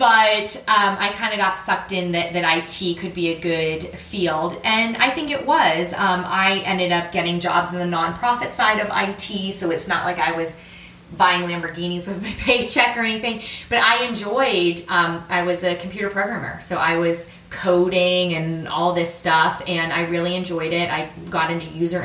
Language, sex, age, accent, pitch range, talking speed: English, female, 20-39, American, 165-190 Hz, 195 wpm